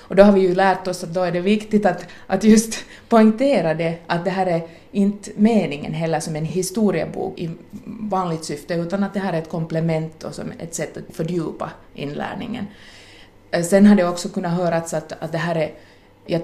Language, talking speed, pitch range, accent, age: Finnish, 205 wpm, 160-200 Hz, native, 30-49